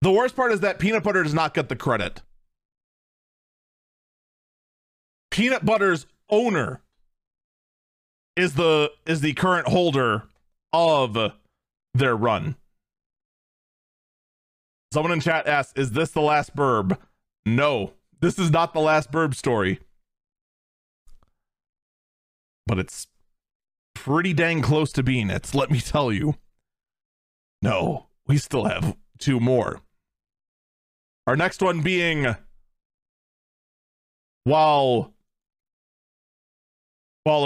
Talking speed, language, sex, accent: 105 wpm, English, male, American